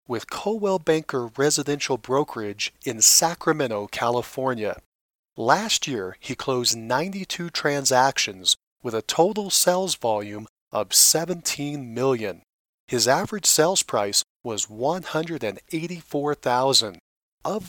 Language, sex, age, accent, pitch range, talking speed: English, male, 40-59, American, 120-170 Hz, 120 wpm